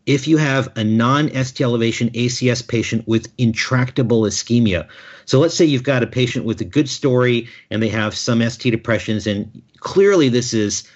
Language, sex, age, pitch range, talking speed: English, male, 50-69, 110-130 Hz, 180 wpm